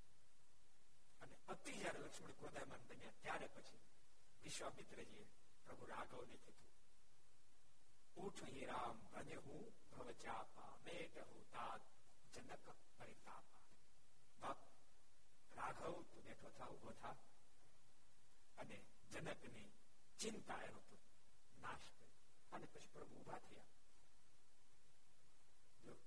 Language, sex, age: Gujarati, male, 60-79